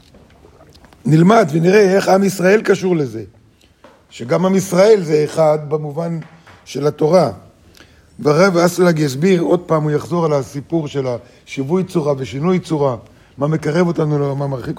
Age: 50-69